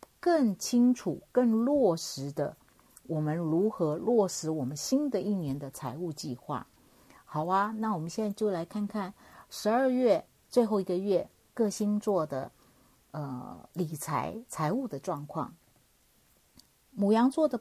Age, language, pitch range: 50-69, Chinese, 155-215 Hz